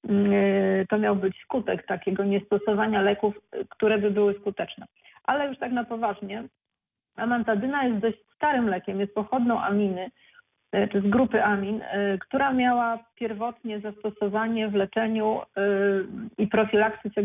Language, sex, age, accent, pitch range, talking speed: Polish, female, 40-59, native, 200-230 Hz, 125 wpm